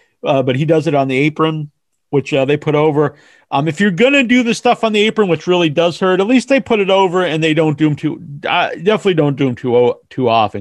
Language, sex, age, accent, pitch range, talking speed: English, male, 40-59, American, 140-190 Hz, 265 wpm